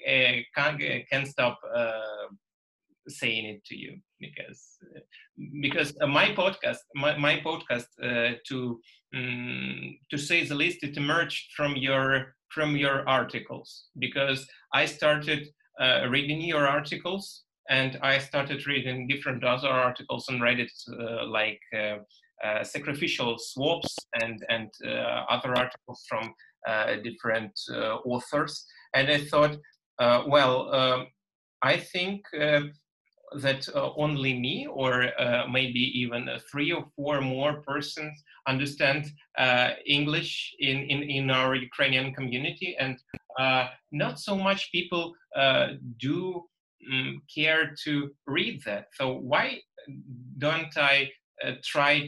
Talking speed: 135 wpm